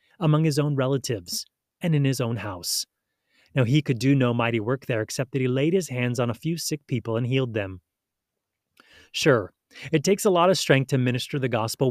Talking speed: 210 wpm